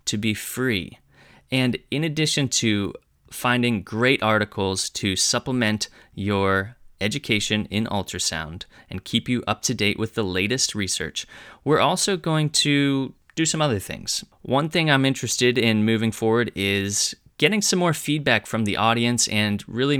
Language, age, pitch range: English, 20-39, 100-125 Hz